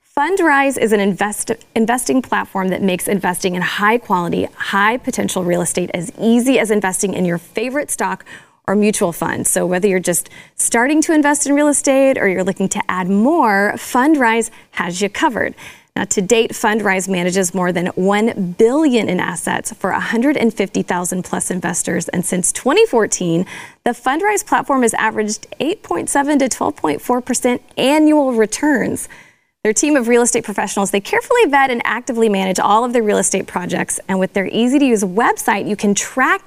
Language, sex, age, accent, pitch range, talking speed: English, female, 20-39, American, 190-255 Hz, 160 wpm